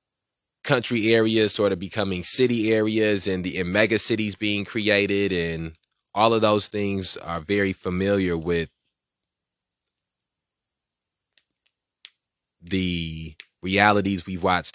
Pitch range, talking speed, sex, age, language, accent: 85-100 Hz, 110 wpm, male, 20-39, English, American